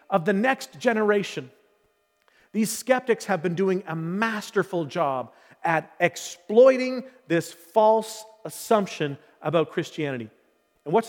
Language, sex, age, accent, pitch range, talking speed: English, male, 40-59, American, 170-235 Hz, 115 wpm